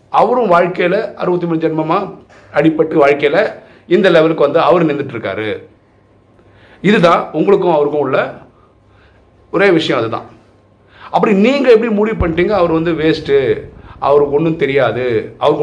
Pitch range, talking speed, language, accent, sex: 135-195 Hz, 110 wpm, Tamil, native, male